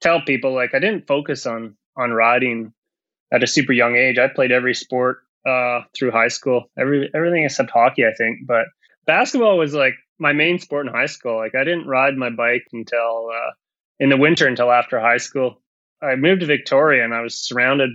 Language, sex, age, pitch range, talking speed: English, male, 20-39, 120-140 Hz, 200 wpm